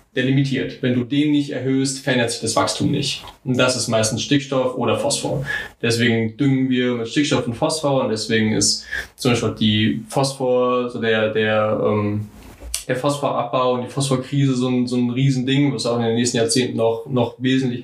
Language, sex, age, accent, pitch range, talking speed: German, male, 20-39, German, 115-135 Hz, 185 wpm